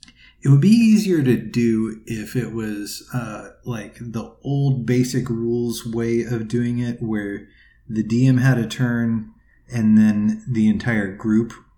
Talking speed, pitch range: 155 wpm, 110-135 Hz